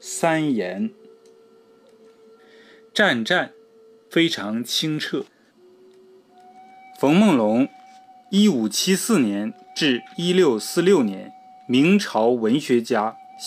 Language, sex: Chinese, male